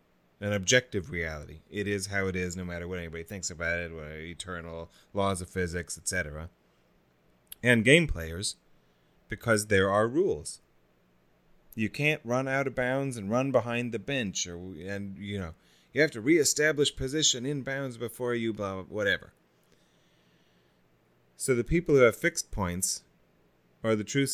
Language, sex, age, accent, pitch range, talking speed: English, male, 30-49, American, 85-115 Hz, 165 wpm